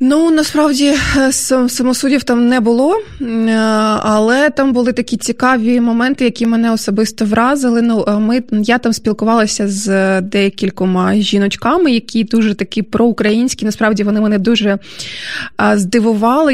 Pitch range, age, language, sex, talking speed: 195-230 Hz, 20-39, Ukrainian, female, 120 wpm